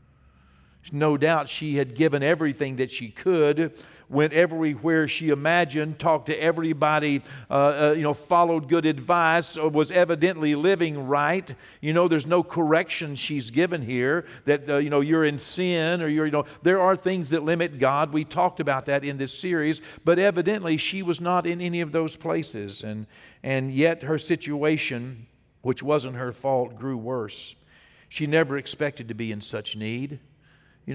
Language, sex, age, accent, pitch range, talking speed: English, male, 50-69, American, 125-160 Hz, 175 wpm